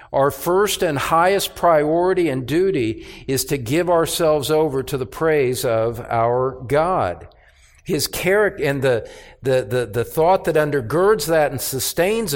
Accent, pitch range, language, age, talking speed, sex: American, 135-175 Hz, English, 50-69, 150 wpm, male